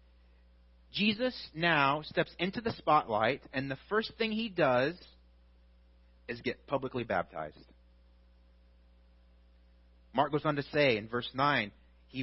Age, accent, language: 30-49, American, English